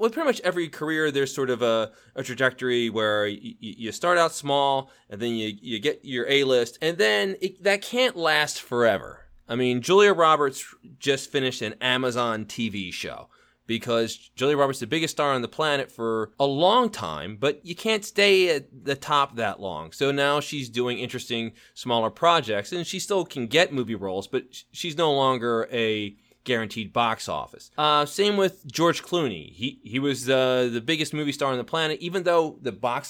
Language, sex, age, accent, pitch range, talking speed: English, male, 20-39, American, 120-160 Hz, 190 wpm